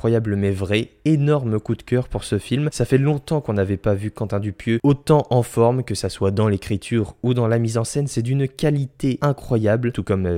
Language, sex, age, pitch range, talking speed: French, male, 20-39, 100-125 Hz, 225 wpm